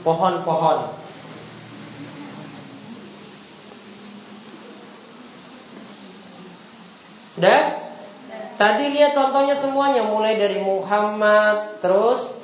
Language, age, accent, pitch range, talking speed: Indonesian, 30-49, native, 200-230 Hz, 50 wpm